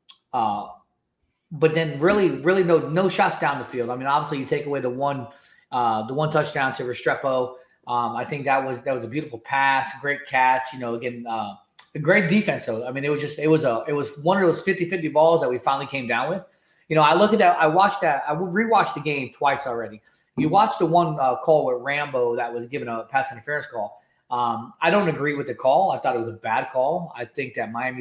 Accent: American